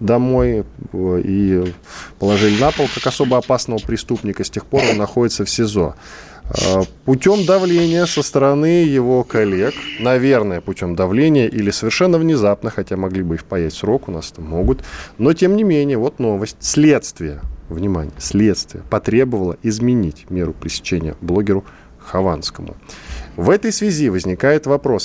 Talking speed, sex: 140 wpm, male